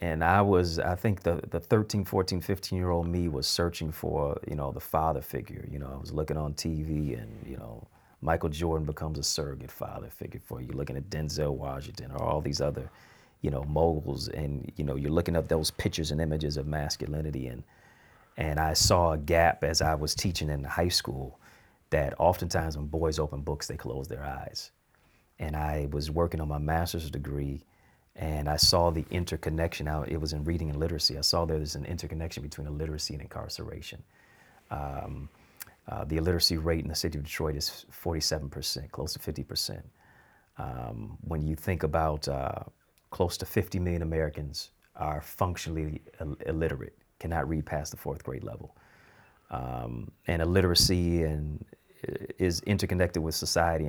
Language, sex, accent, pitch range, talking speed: English, male, American, 75-85 Hz, 180 wpm